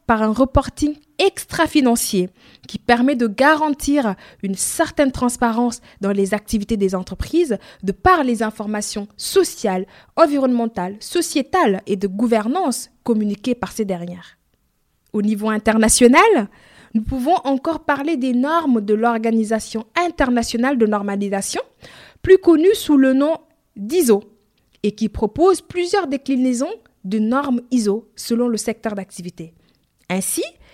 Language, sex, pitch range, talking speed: French, female, 215-300 Hz, 125 wpm